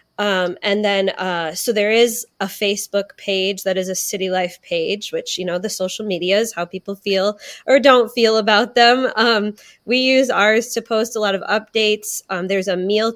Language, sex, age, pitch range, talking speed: English, female, 20-39, 190-225 Hz, 205 wpm